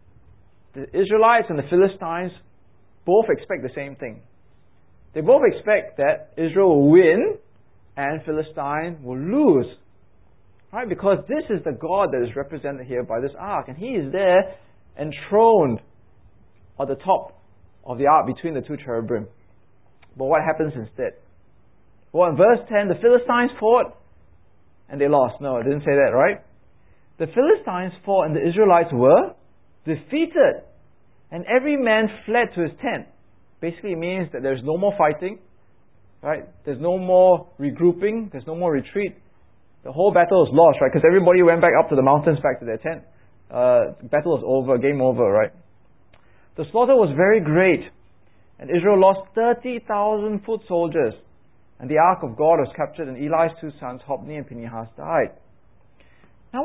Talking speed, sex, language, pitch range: 165 wpm, male, English, 130-200 Hz